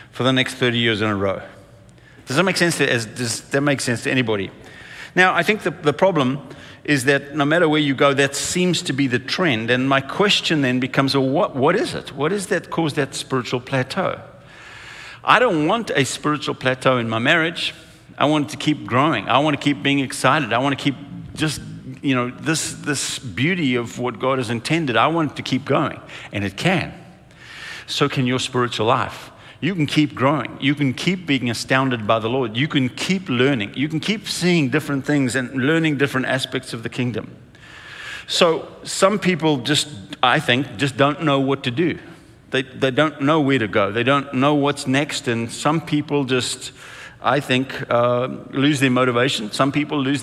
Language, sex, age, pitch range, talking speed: English, male, 50-69, 125-150 Hz, 200 wpm